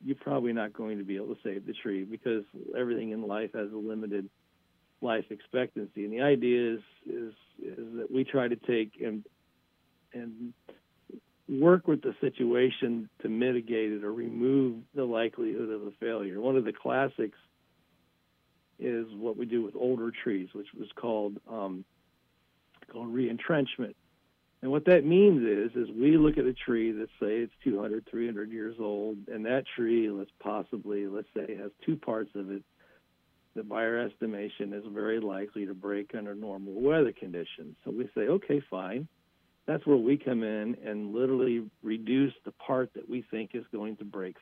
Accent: American